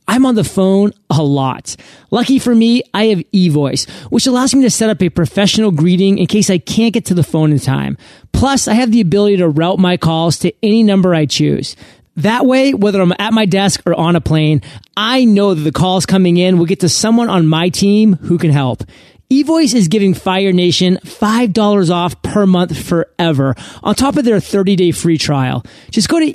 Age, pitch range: 30-49, 165-220 Hz